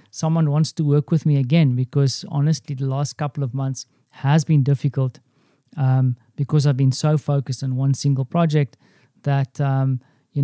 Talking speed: 170 wpm